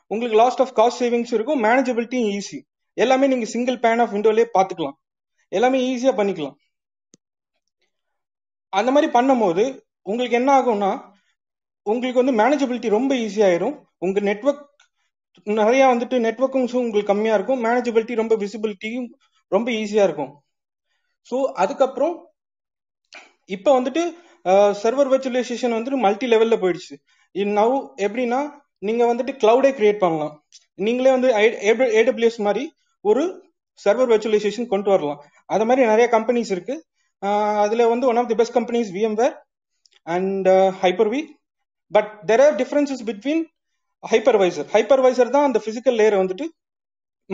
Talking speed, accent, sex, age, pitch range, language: 105 wpm, native, male, 30-49, 205-265 Hz, Tamil